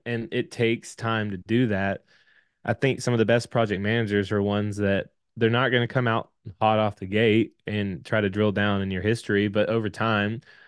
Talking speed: 220 wpm